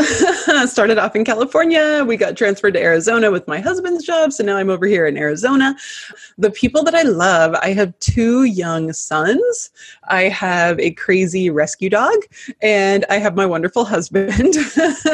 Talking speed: 165 wpm